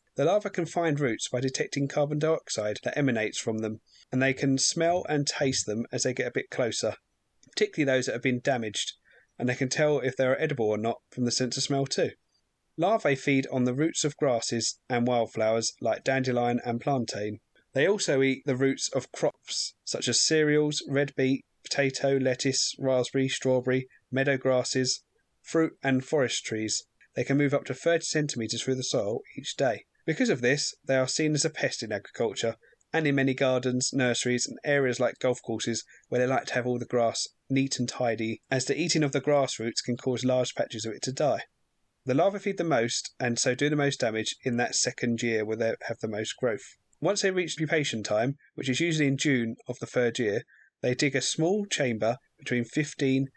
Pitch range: 120-140 Hz